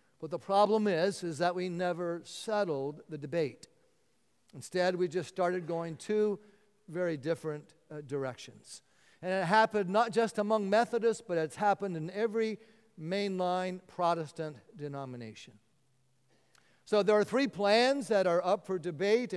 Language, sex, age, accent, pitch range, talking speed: English, male, 50-69, American, 155-205 Hz, 145 wpm